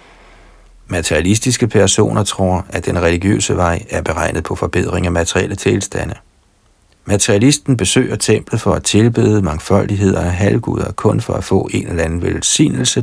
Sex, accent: male, native